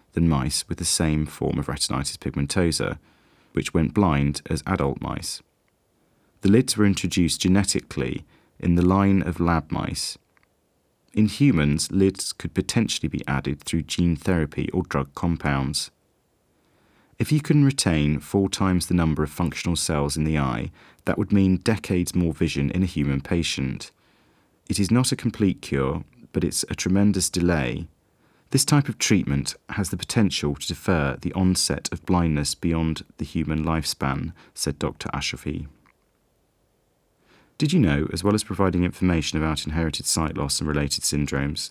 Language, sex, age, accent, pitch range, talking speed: English, male, 30-49, British, 75-95 Hz, 155 wpm